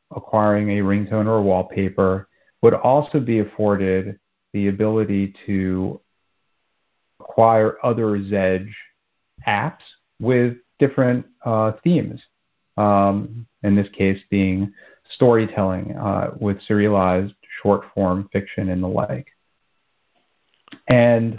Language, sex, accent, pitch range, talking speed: English, male, American, 100-120 Hz, 100 wpm